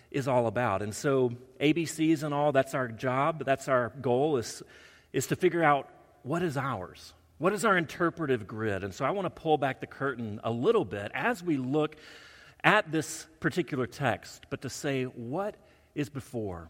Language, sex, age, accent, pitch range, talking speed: English, male, 40-59, American, 110-170 Hz, 185 wpm